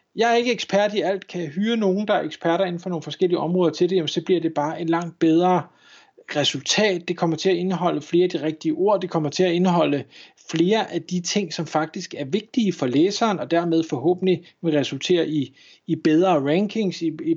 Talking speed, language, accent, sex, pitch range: 225 wpm, Danish, native, male, 160-200 Hz